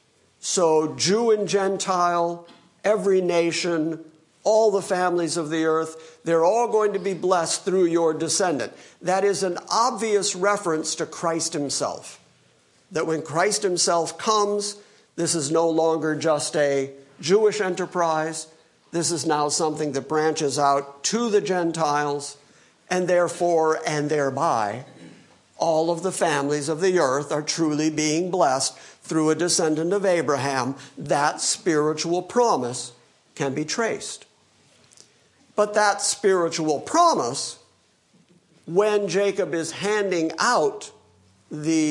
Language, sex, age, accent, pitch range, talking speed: English, male, 50-69, American, 150-190 Hz, 125 wpm